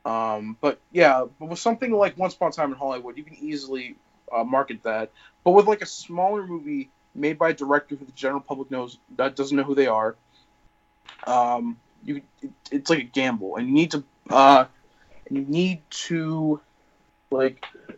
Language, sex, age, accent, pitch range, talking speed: English, male, 20-39, American, 120-155 Hz, 185 wpm